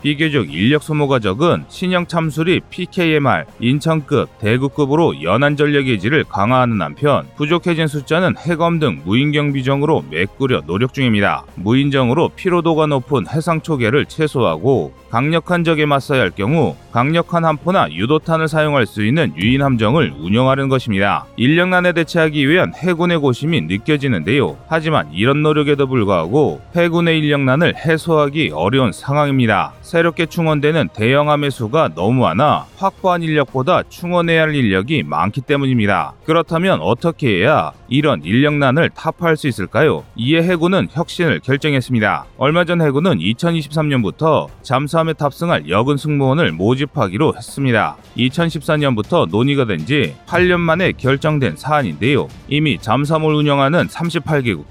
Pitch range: 130-165 Hz